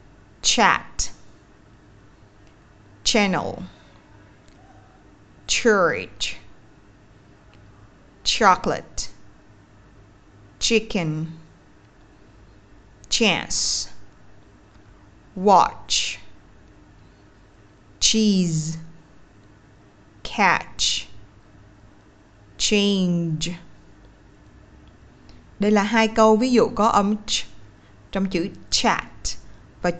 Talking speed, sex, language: 45 wpm, female, Vietnamese